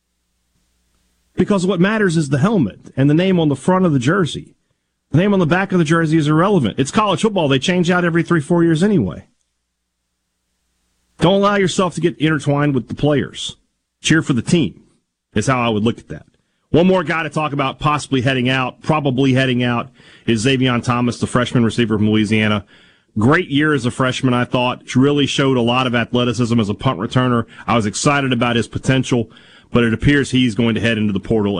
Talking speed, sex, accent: 205 wpm, male, American